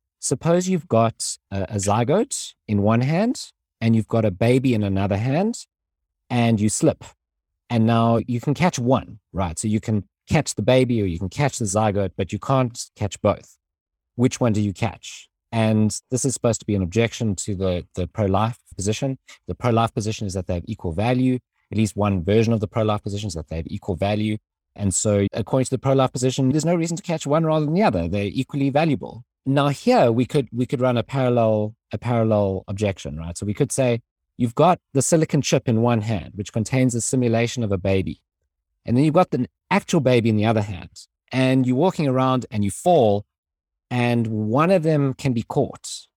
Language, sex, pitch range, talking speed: English, male, 100-130 Hz, 210 wpm